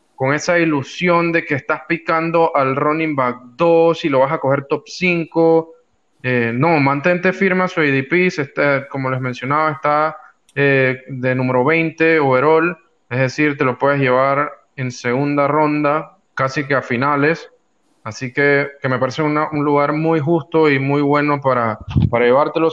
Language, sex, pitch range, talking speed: Spanish, male, 125-155 Hz, 165 wpm